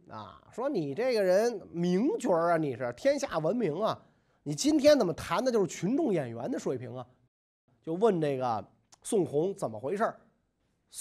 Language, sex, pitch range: Chinese, male, 145-240 Hz